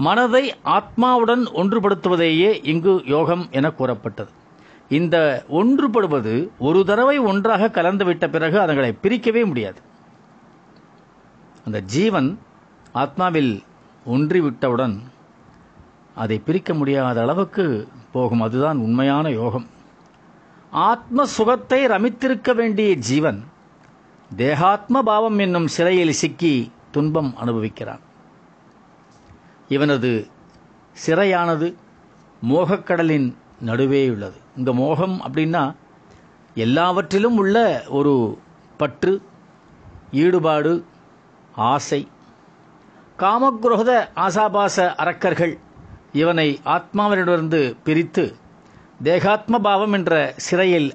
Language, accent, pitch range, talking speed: Tamil, native, 135-200 Hz, 75 wpm